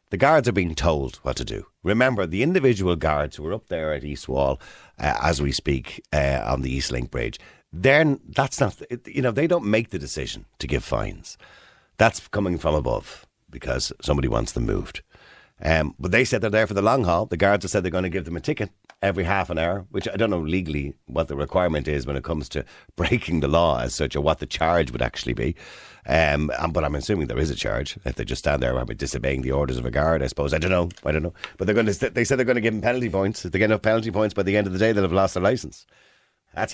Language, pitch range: English, 75-110 Hz